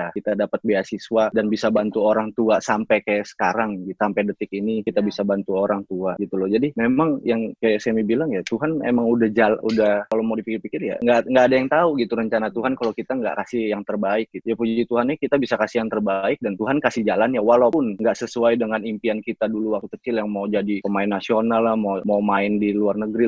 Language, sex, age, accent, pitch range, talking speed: Indonesian, male, 20-39, native, 100-115 Hz, 220 wpm